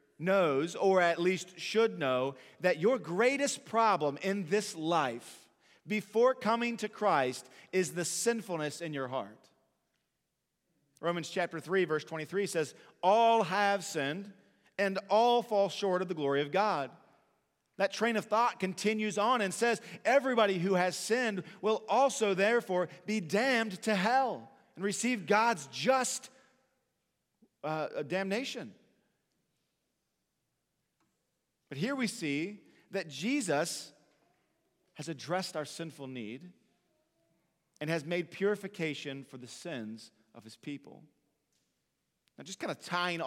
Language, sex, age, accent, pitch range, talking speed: English, male, 40-59, American, 155-210 Hz, 130 wpm